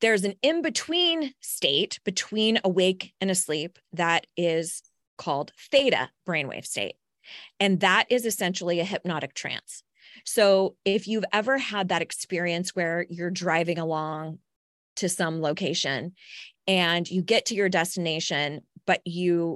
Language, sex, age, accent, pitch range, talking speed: English, female, 20-39, American, 170-205 Hz, 130 wpm